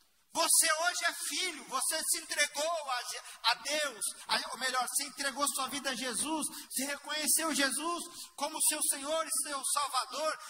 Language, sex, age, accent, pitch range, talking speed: Portuguese, male, 50-69, Brazilian, 215-320 Hz, 155 wpm